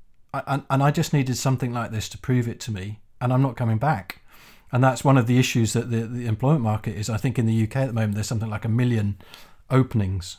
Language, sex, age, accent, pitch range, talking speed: English, male, 40-59, British, 110-130 Hz, 255 wpm